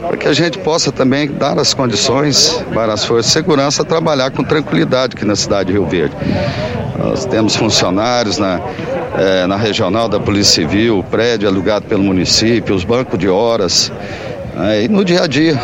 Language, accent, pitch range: Portuguese, Brazilian, 120-160 Hz